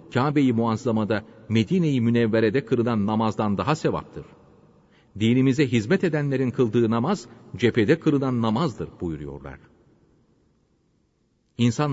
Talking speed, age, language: 90 wpm, 40-59, Turkish